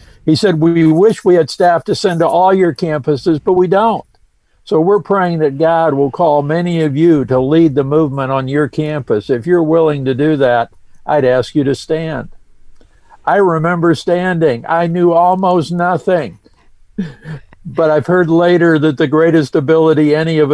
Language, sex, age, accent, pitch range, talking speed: English, male, 60-79, American, 140-165 Hz, 180 wpm